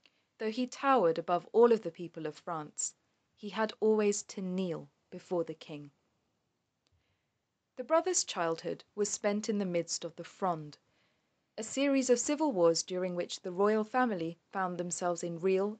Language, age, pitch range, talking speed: English, 30-49, 170-220 Hz, 165 wpm